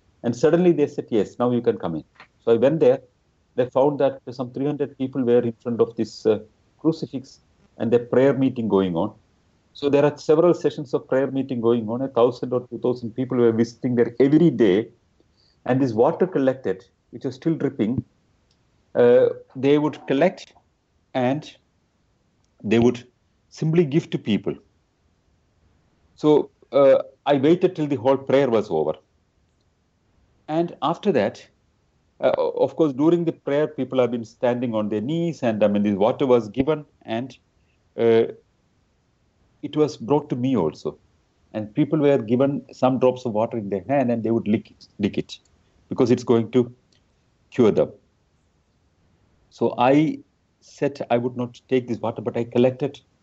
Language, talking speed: English, 170 wpm